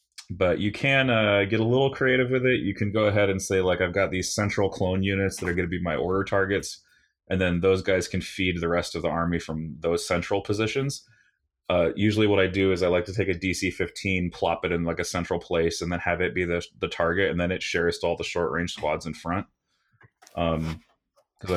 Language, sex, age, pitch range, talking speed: English, male, 30-49, 85-100 Hz, 235 wpm